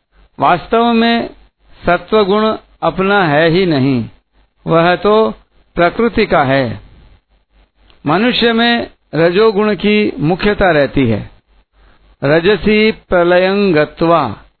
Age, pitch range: 60-79, 145-200 Hz